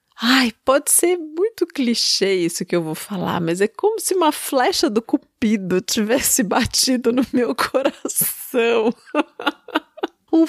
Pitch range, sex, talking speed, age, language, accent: 200-310 Hz, female, 135 wpm, 30-49, Portuguese, Brazilian